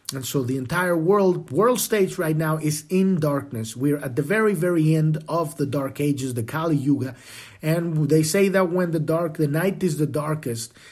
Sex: male